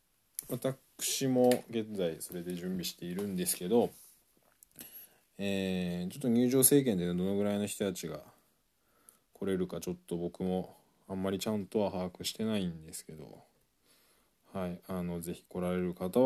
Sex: male